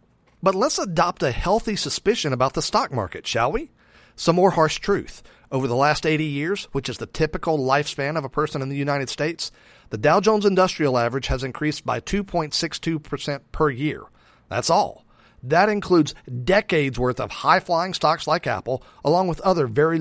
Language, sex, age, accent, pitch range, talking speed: English, male, 40-59, American, 135-180 Hz, 175 wpm